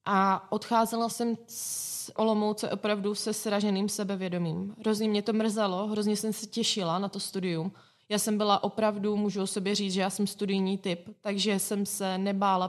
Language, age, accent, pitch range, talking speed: Czech, 20-39, native, 185-215 Hz, 175 wpm